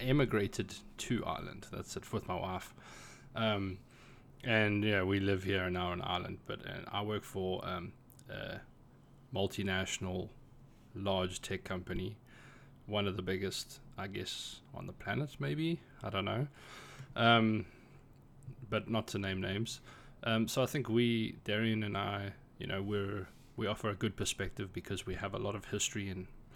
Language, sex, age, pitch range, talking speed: English, male, 20-39, 95-125 Hz, 160 wpm